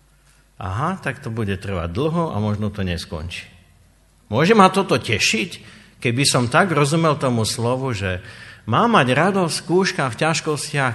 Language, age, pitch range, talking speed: Slovak, 50-69, 105-145 Hz, 150 wpm